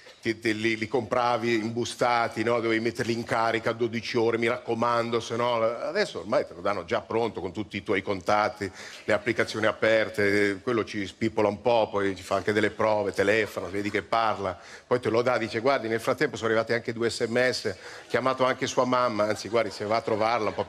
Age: 50-69